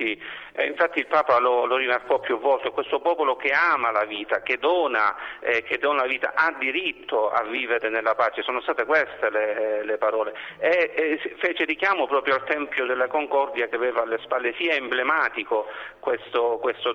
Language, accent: Italian, native